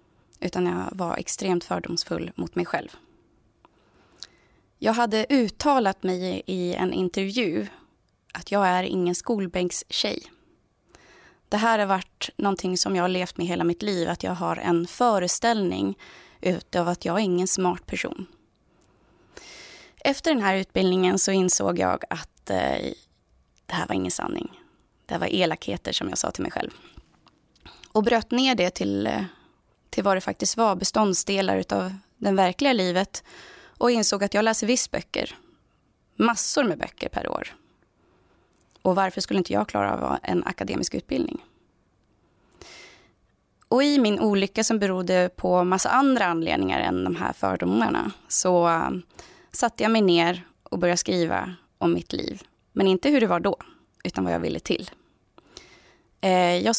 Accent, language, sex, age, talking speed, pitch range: native, Swedish, female, 20-39, 150 wpm, 175-215 Hz